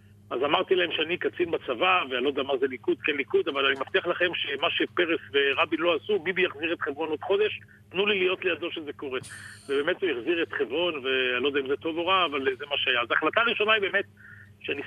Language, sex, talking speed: Hebrew, male, 235 wpm